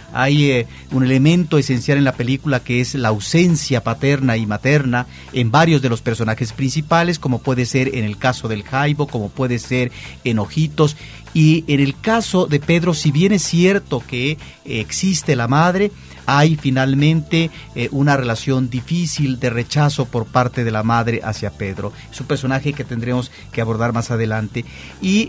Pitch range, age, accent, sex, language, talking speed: 125-170 Hz, 40-59, Mexican, male, Spanish, 170 wpm